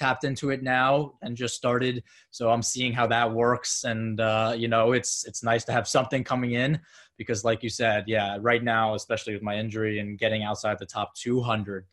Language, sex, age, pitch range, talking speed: English, male, 20-39, 110-125 Hz, 210 wpm